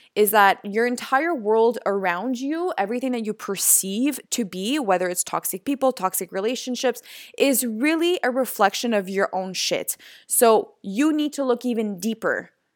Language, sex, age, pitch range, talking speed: English, female, 20-39, 205-255 Hz, 160 wpm